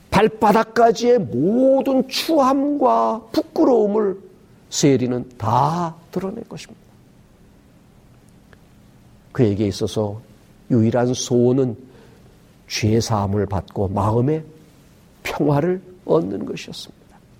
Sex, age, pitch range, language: male, 50-69, 110-160 Hz, Korean